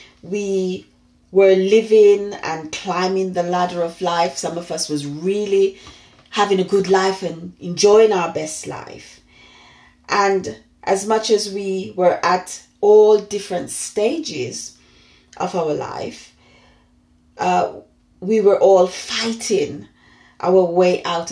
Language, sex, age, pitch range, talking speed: English, female, 40-59, 170-210 Hz, 125 wpm